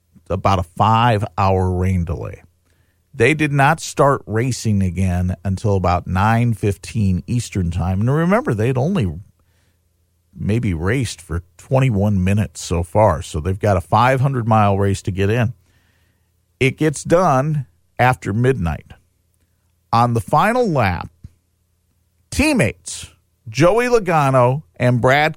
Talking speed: 120 wpm